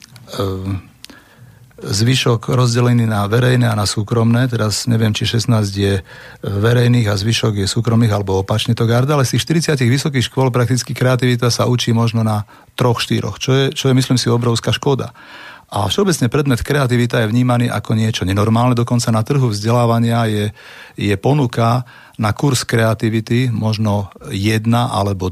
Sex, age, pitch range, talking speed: male, 40-59, 105-125 Hz, 150 wpm